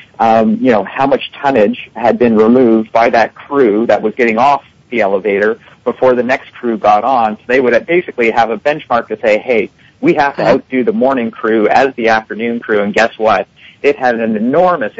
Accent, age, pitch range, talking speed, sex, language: American, 40-59, 110-135 Hz, 210 wpm, male, English